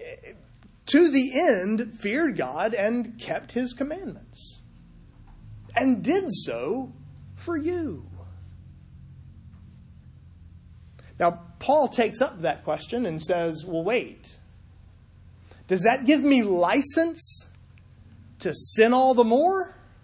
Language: English